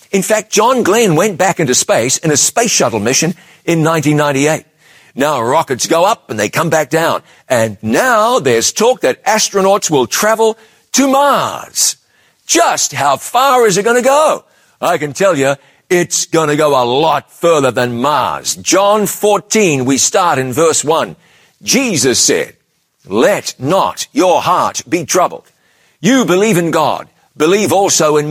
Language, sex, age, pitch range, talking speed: English, male, 50-69, 145-195 Hz, 165 wpm